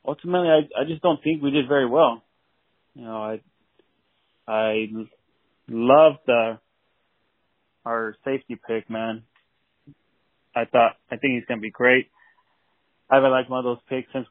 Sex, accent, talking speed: male, American, 155 wpm